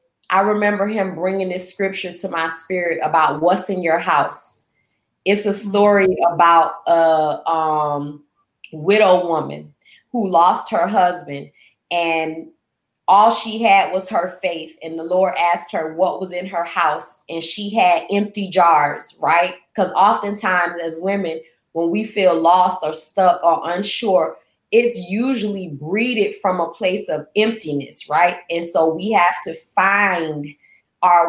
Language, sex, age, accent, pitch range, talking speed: English, female, 20-39, American, 165-205 Hz, 150 wpm